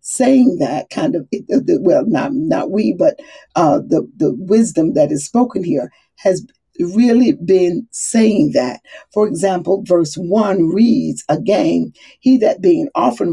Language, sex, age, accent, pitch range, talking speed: English, female, 50-69, American, 200-285 Hz, 145 wpm